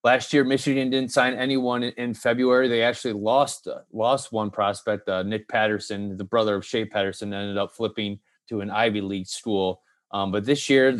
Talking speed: 190 wpm